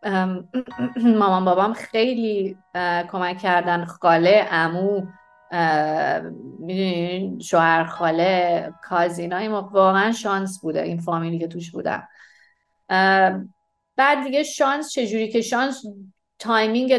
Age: 30-49